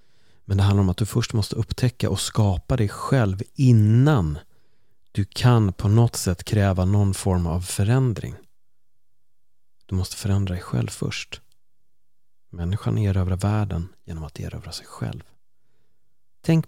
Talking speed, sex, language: 140 wpm, male, Swedish